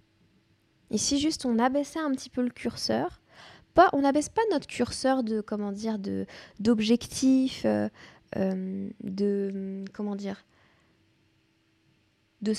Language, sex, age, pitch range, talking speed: French, female, 10-29, 210-260 Hz, 110 wpm